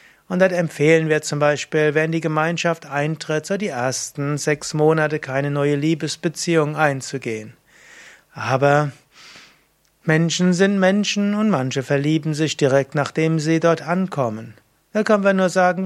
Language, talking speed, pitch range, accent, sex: German, 140 wpm, 145-170 Hz, German, male